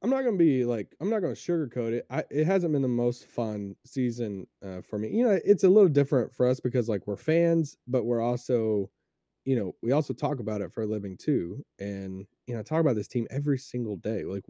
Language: English